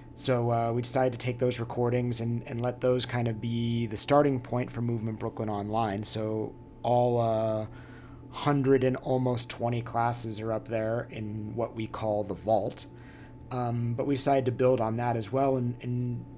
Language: English